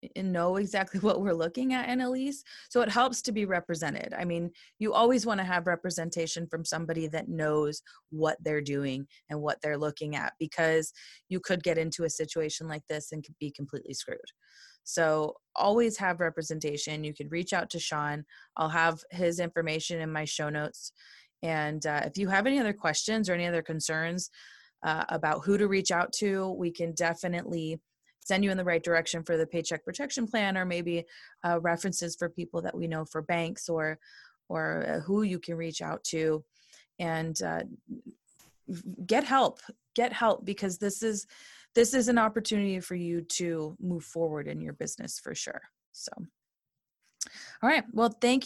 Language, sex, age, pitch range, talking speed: English, female, 20-39, 160-205 Hz, 180 wpm